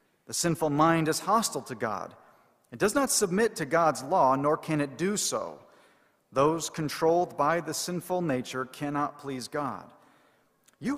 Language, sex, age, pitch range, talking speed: English, male, 40-59, 135-170 Hz, 160 wpm